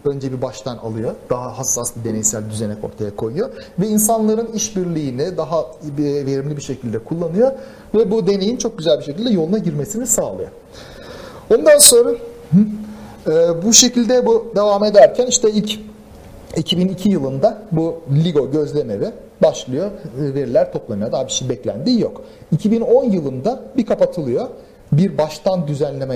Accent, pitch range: native, 140-220 Hz